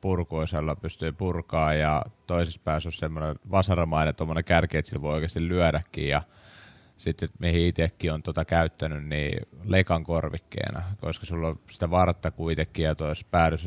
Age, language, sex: 20-39, Finnish, male